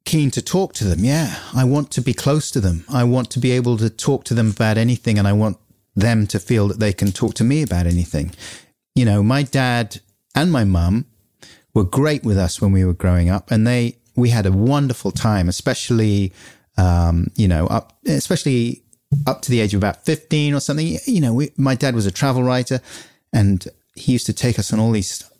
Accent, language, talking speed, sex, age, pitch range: British, English, 220 wpm, male, 40-59, 105-140 Hz